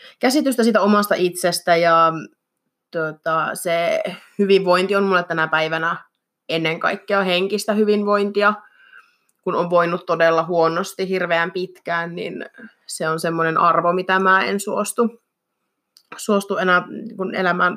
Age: 20-39